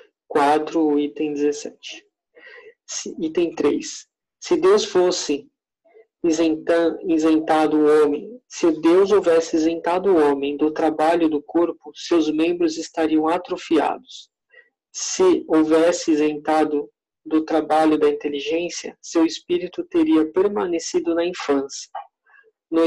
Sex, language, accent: male, Portuguese, Brazilian